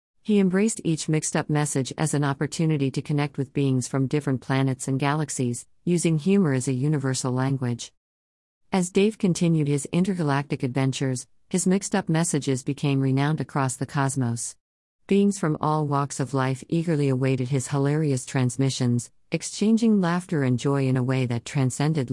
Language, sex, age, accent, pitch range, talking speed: English, female, 50-69, American, 130-160 Hz, 155 wpm